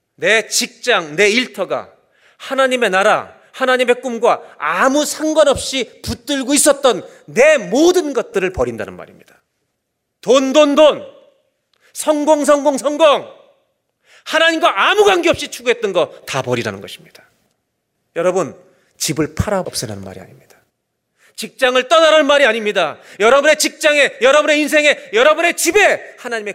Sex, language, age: male, Korean, 40-59